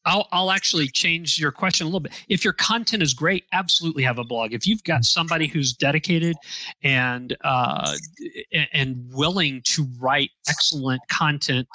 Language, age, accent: English, 40-59, American